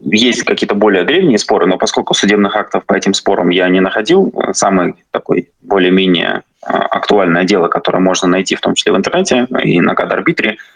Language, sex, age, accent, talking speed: Russian, male, 20-39, native, 165 wpm